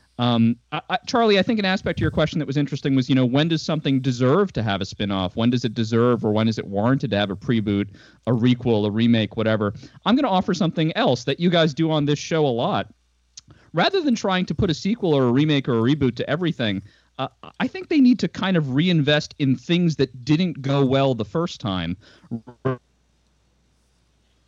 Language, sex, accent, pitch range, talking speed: English, male, American, 110-155 Hz, 220 wpm